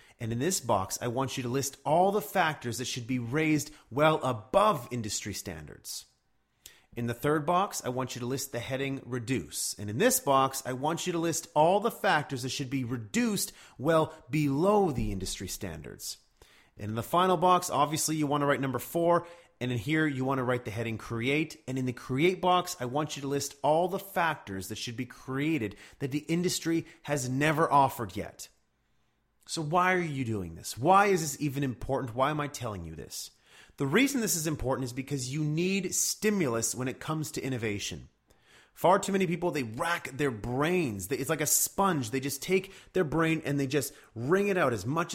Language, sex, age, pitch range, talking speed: English, male, 30-49, 125-175 Hz, 205 wpm